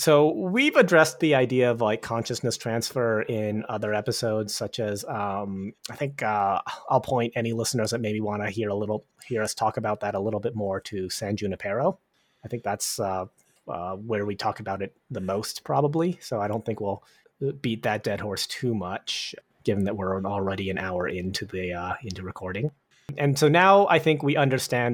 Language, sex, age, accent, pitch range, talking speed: English, male, 30-49, American, 100-130 Hz, 200 wpm